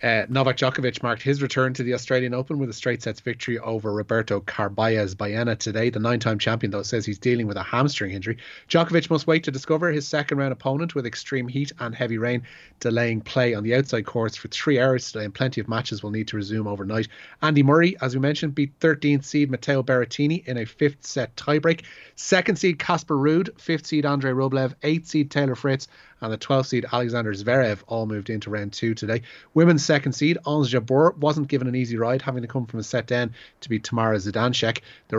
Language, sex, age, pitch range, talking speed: English, male, 30-49, 115-140 Hz, 210 wpm